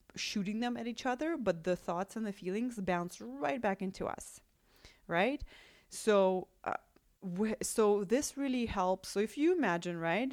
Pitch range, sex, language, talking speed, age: 170-215 Hz, female, English, 170 wpm, 30-49